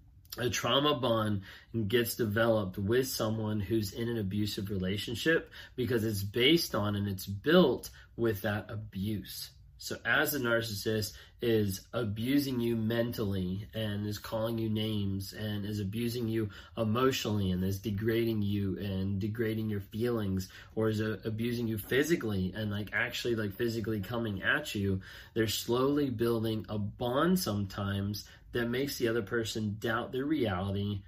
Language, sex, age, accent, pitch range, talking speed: English, male, 20-39, American, 100-120 Hz, 145 wpm